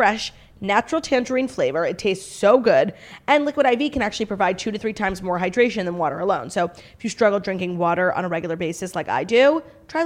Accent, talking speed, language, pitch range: American, 220 wpm, English, 185-240 Hz